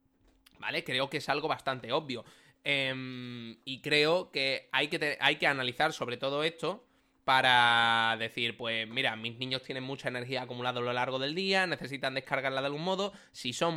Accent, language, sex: Spanish, Spanish, male